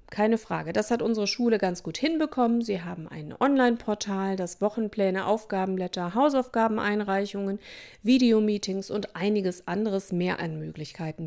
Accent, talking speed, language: German, 130 wpm, German